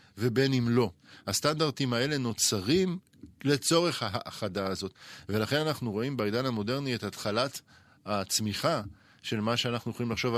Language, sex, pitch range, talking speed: Hebrew, male, 110-135 Hz, 125 wpm